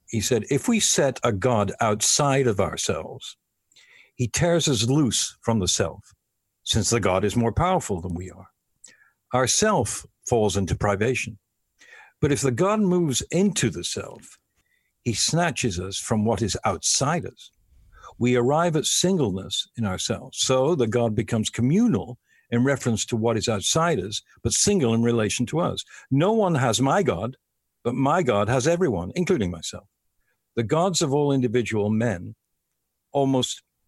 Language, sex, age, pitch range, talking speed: English, male, 60-79, 105-140 Hz, 160 wpm